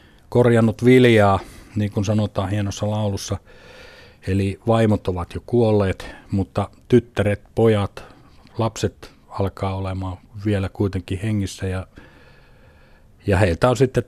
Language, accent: Finnish, native